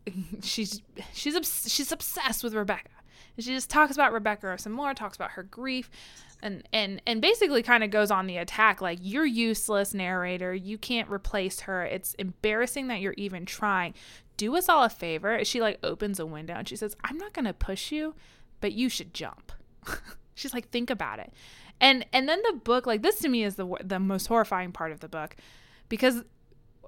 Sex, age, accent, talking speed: female, 20-39, American, 200 wpm